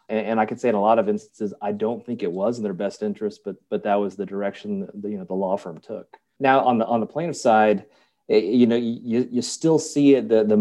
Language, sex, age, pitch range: English, male, 30-49, 100-125 Hz